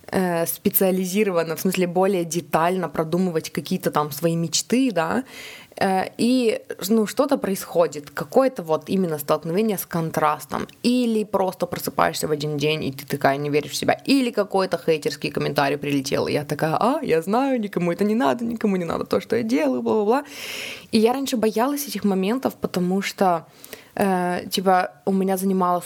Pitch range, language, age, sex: 160-205 Hz, Russian, 20-39, female